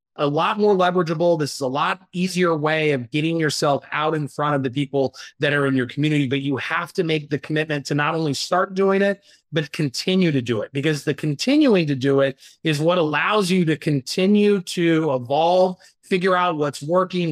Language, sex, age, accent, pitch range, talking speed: English, male, 30-49, American, 155-195 Hz, 210 wpm